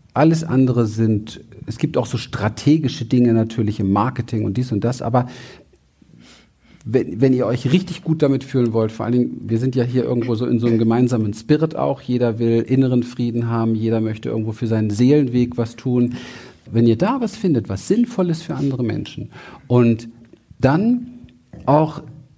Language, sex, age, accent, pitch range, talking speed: German, male, 50-69, German, 115-150 Hz, 175 wpm